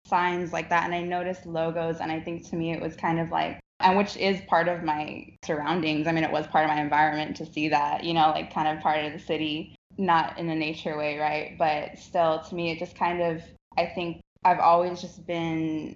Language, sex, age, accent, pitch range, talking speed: English, female, 20-39, American, 155-180 Hz, 240 wpm